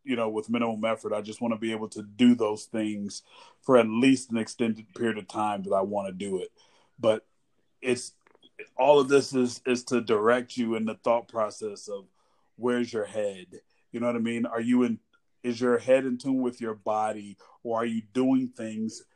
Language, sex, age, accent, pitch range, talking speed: English, male, 30-49, American, 115-130 Hz, 215 wpm